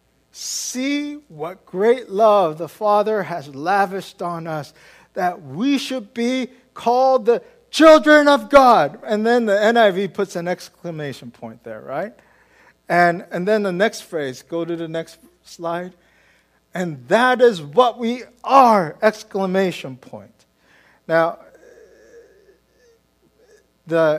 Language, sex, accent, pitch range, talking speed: English, male, American, 160-235 Hz, 125 wpm